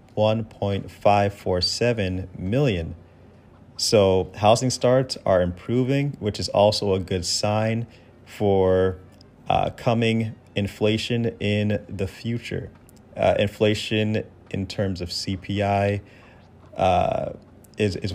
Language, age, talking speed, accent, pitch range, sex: English, 30-49, 95 wpm, American, 90-110 Hz, male